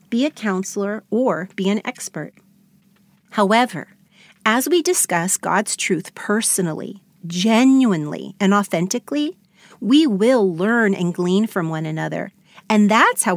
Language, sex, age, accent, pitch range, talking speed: English, female, 40-59, American, 185-230 Hz, 125 wpm